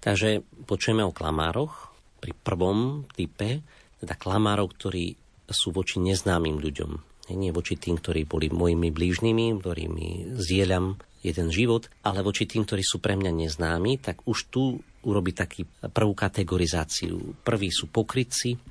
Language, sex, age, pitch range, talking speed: Slovak, male, 40-59, 85-110 Hz, 140 wpm